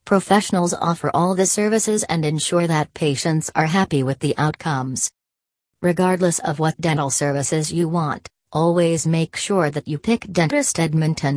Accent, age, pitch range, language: American, 40-59, 145-180 Hz, English